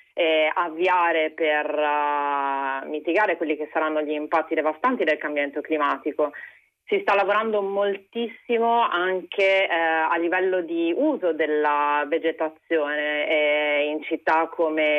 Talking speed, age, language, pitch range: 115 wpm, 30-49, Italian, 155-185 Hz